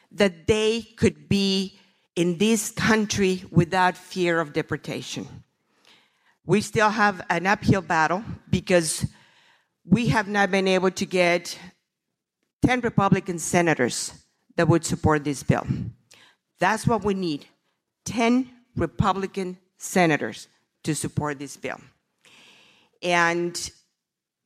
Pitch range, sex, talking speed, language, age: 165-205 Hz, female, 110 wpm, English, 50-69